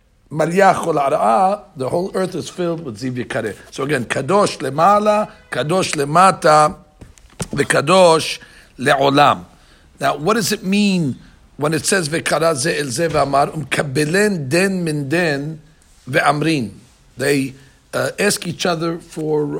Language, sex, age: English, male, 60-79